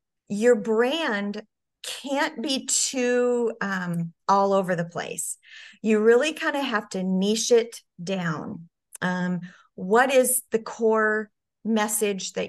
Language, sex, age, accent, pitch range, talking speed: English, female, 40-59, American, 185-225 Hz, 125 wpm